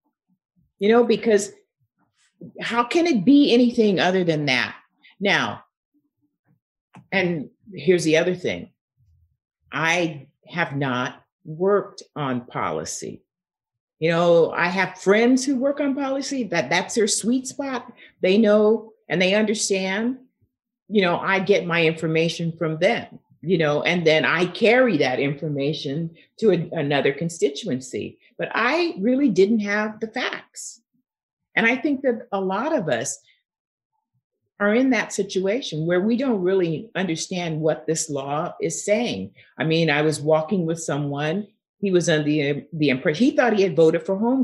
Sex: female